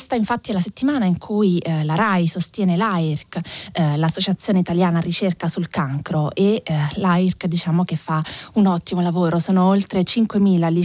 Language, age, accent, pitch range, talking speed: Italian, 20-39, native, 170-205 Hz, 170 wpm